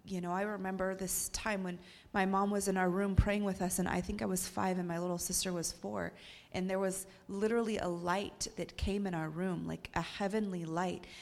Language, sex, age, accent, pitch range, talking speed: English, female, 30-49, American, 165-195 Hz, 230 wpm